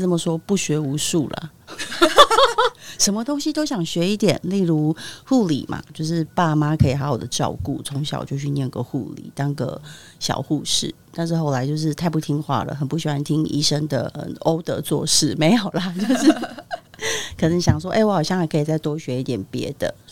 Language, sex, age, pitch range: Chinese, female, 30-49, 145-165 Hz